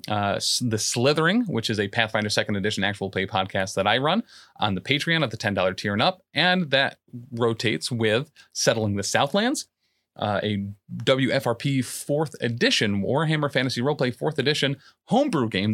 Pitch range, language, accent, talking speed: 105-150 Hz, English, American, 165 wpm